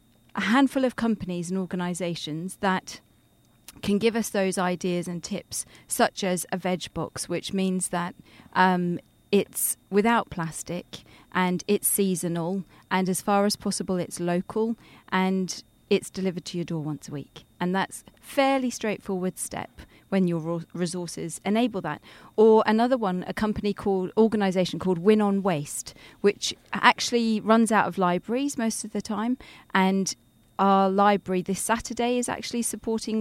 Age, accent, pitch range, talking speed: 40-59, British, 175-215 Hz, 150 wpm